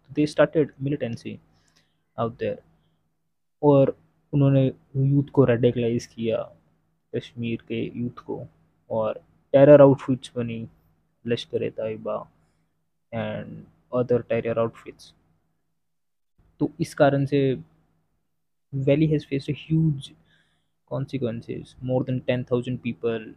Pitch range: 115-140 Hz